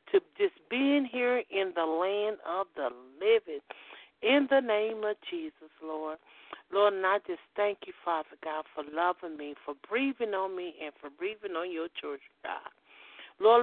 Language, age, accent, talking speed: English, 50-69, American, 170 wpm